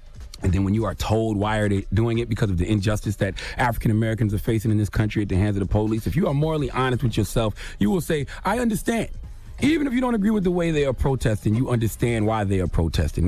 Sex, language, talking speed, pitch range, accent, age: male, English, 260 wpm, 95-115 Hz, American, 30-49